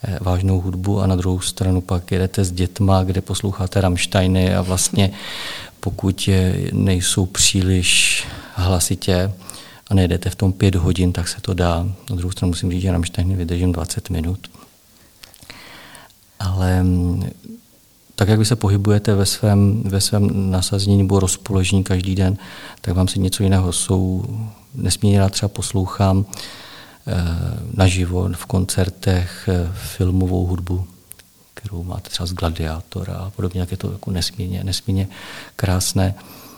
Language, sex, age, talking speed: Czech, male, 50-69, 135 wpm